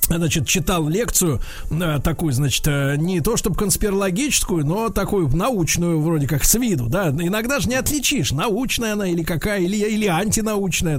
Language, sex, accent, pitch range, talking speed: Russian, male, native, 150-220 Hz, 155 wpm